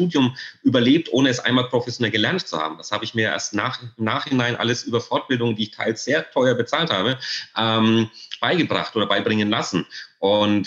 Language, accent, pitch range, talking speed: German, German, 100-125 Hz, 180 wpm